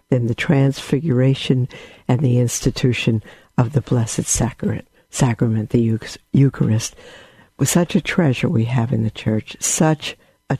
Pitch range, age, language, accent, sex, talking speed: 115-140 Hz, 60-79, English, American, female, 135 wpm